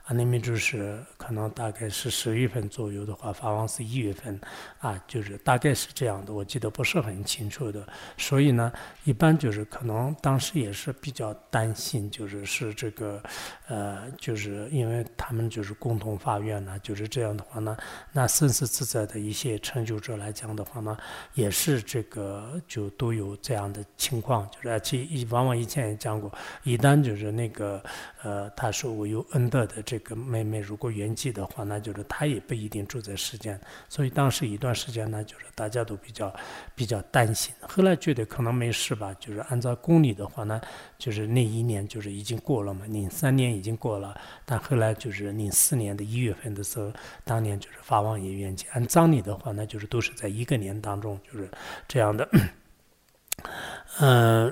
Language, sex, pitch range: English, male, 105-125 Hz